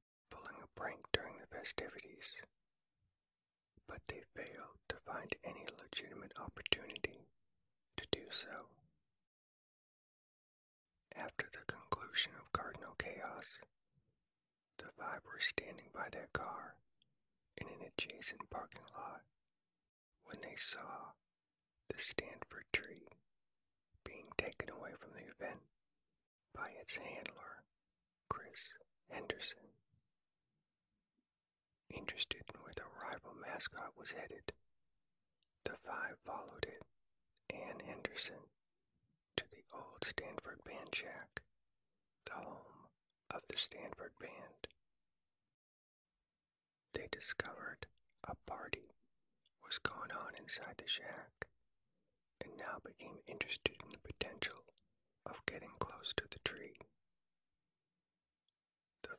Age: 40-59